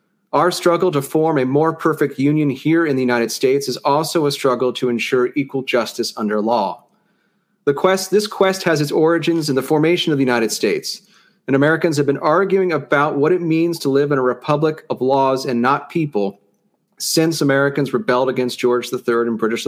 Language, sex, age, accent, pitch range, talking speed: English, male, 40-59, American, 125-165 Hz, 195 wpm